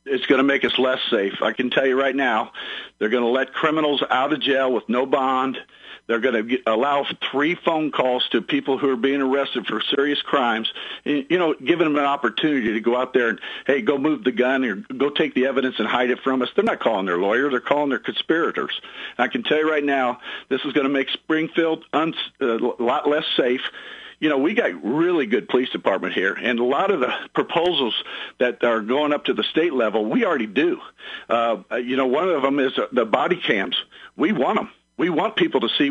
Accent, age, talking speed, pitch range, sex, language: American, 50-69, 225 wpm, 130-160 Hz, male, English